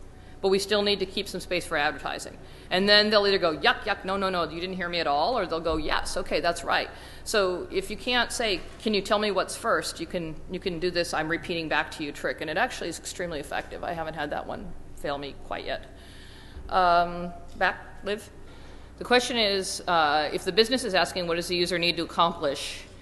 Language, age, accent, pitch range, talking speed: English, 40-59, American, 155-195 Hz, 235 wpm